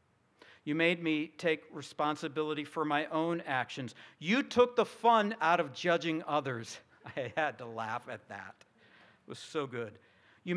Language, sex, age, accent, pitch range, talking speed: English, male, 50-69, American, 130-165 Hz, 160 wpm